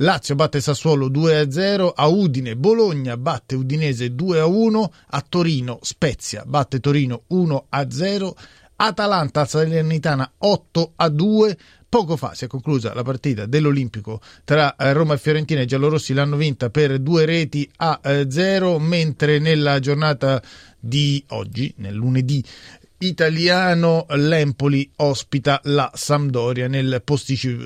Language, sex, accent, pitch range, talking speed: Italian, male, native, 130-165 Hz, 120 wpm